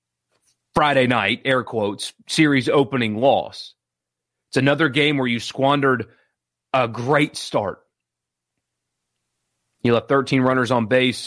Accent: American